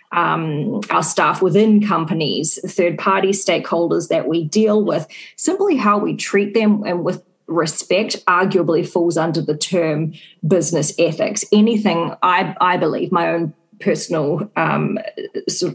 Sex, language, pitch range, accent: female, English, 165-195 Hz, Australian